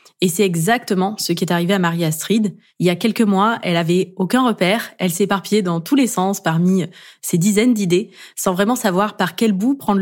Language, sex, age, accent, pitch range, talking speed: French, female, 20-39, French, 180-220 Hz, 210 wpm